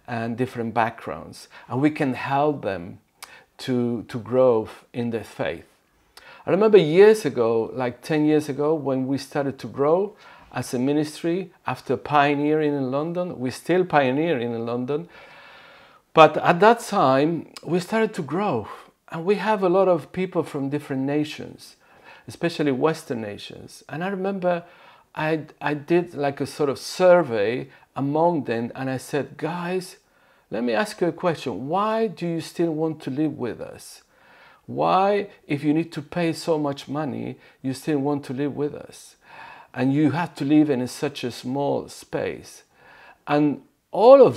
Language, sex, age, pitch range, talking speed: English, male, 50-69, 130-165 Hz, 165 wpm